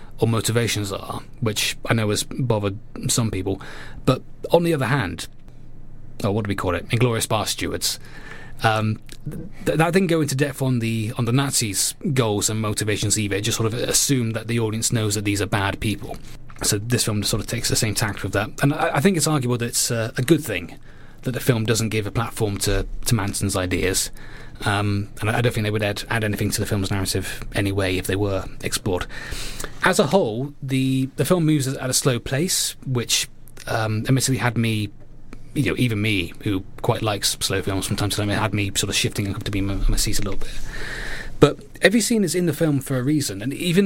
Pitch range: 105-130 Hz